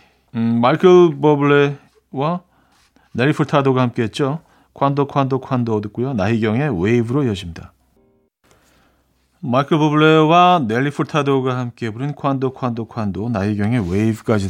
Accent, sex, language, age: native, male, Korean, 40-59